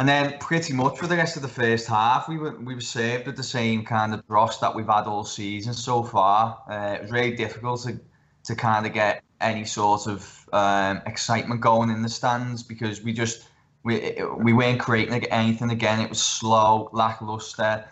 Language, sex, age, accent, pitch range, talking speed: English, male, 10-29, British, 105-120 Hz, 205 wpm